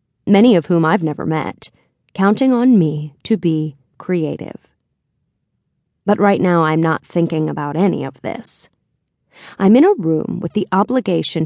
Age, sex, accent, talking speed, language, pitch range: 30-49, female, American, 150 wpm, English, 160-205 Hz